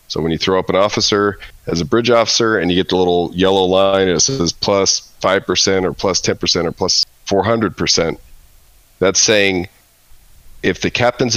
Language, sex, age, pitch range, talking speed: English, male, 40-59, 80-105 Hz, 180 wpm